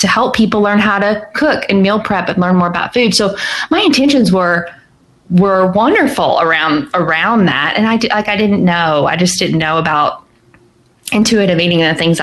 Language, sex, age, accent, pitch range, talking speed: English, female, 20-39, American, 160-200 Hz, 200 wpm